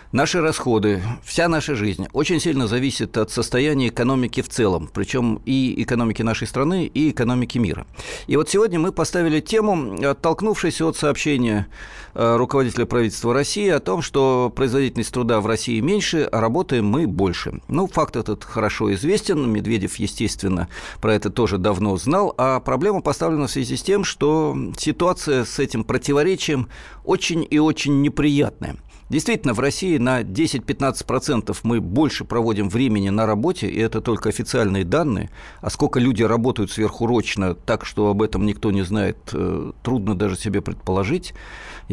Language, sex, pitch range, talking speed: Russian, male, 100-140 Hz, 150 wpm